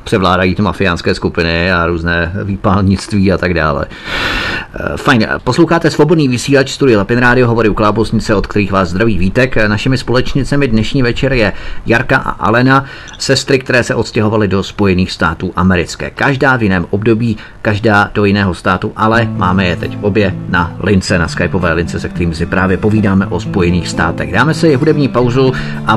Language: Czech